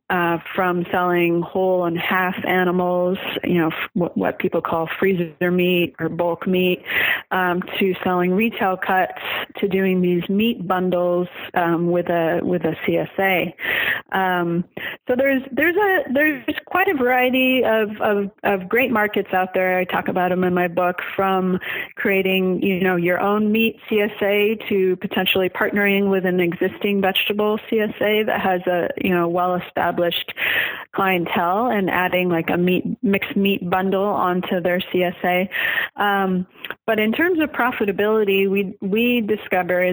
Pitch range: 175-205 Hz